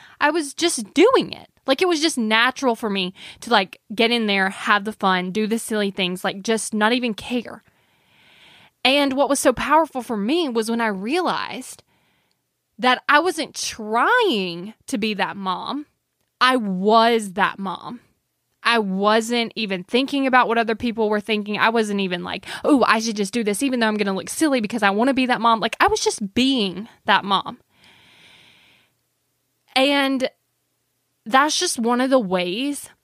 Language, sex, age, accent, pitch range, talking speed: English, female, 10-29, American, 205-255 Hz, 180 wpm